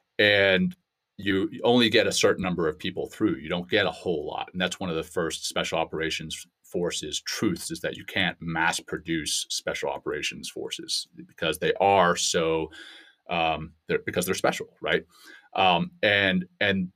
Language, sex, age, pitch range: English, male, 30-49, 85-95 Hz